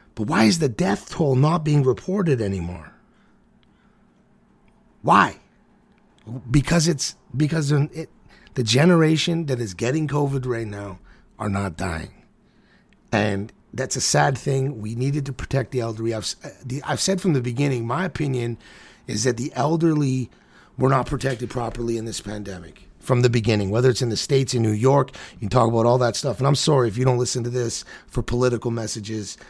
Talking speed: 175 wpm